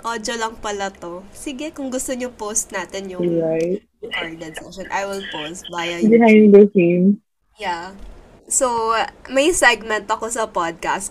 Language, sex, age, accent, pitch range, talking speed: Filipino, female, 20-39, native, 185-225 Hz, 135 wpm